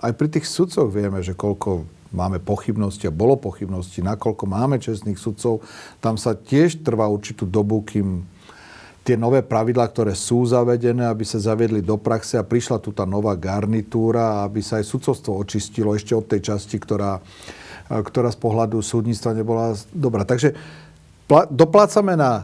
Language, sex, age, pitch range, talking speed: Slovak, male, 40-59, 105-130 Hz, 160 wpm